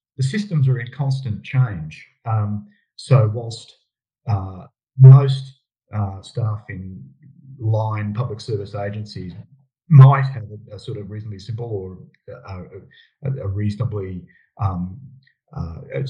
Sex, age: male, 30-49